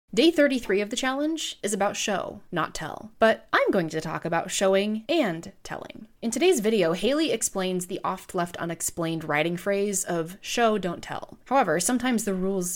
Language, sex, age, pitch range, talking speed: English, female, 20-39, 170-230 Hz, 175 wpm